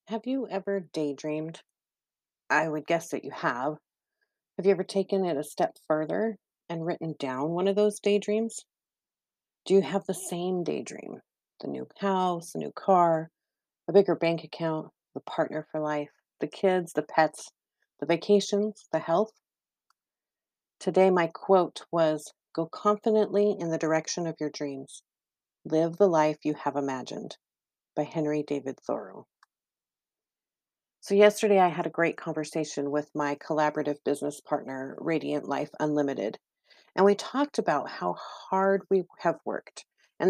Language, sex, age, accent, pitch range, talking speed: English, female, 40-59, American, 150-195 Hz, 150 wpm